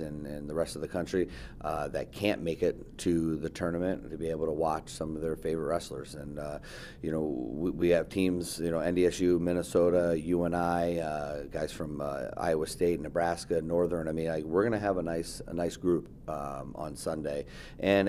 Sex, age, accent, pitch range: male, 30-49, American, 80-95 Hz